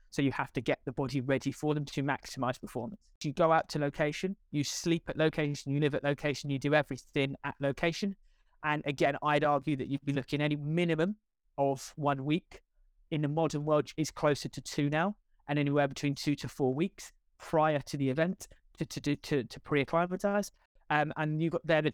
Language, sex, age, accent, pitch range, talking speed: English, male, 30-49, British, 140-155 Hz, 210 wpm